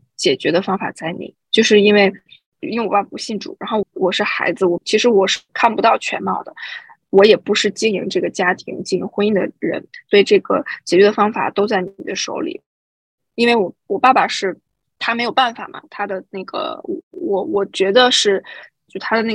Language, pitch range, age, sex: Chinese, 185-220 Hz, 20-39, female